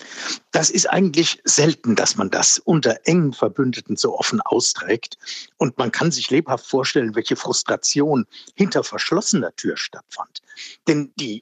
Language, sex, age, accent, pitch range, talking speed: German, male, 50-69, German, 130-200 Hz, 140 wpm